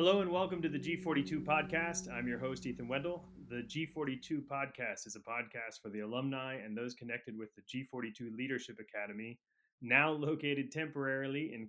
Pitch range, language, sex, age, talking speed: 120-145 Hz, English, male, 20-39, 170 wpm